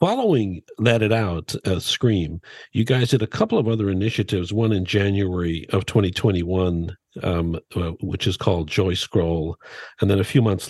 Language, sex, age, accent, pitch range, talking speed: English, male, 50-69, American, 90-115 Hz, 170 wpm